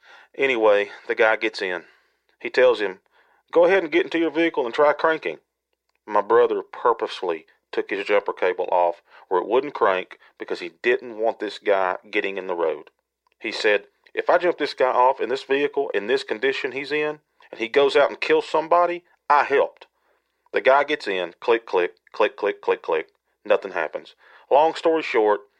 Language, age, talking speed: English, 40-59, 190 wpm